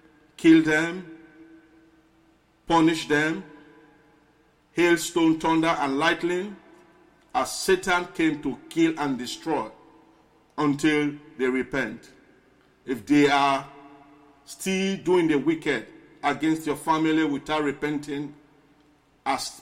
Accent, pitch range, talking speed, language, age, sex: Nigerian, 140-160 Hz, 95 wpm, English, 50-69, male